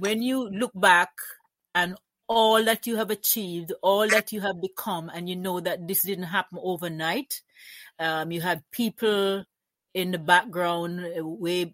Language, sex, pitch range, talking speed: English, female, 175-220 Hz, 160 wpm